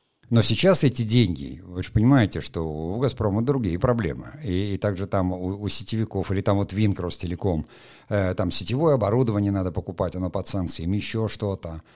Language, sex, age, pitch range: Russian, male, 50-69, 95-120 Hz